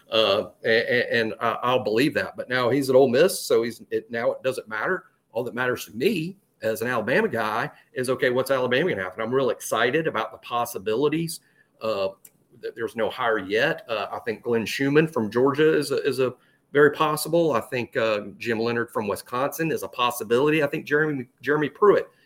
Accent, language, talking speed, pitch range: American, English, 200 wpm, 115-165 Hz